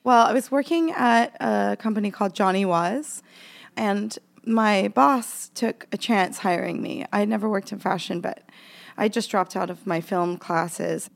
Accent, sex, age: American, female, 20-39